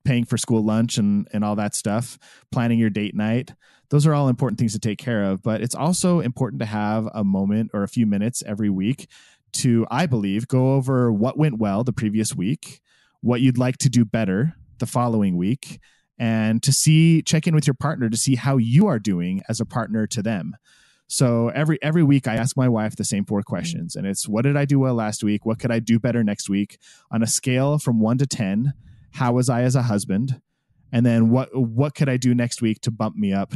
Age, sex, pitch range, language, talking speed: 20-39, male, 110-140 Hz, English, 230 wpm